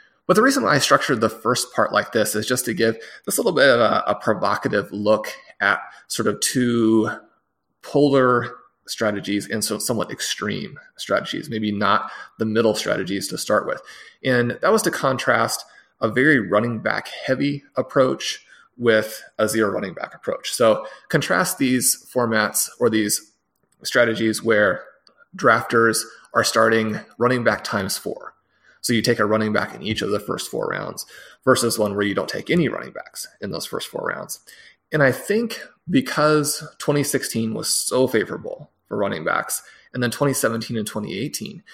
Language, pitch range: English, 110-130 Hz